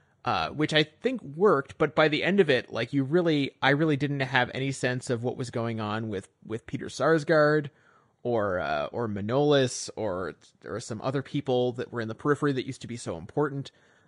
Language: English